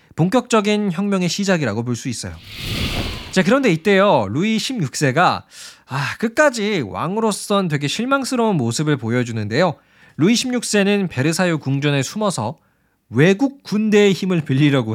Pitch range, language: 115-190 Hz, Korean